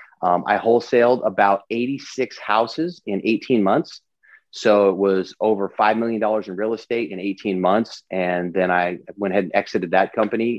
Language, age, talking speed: English, 30-49, 175 wpm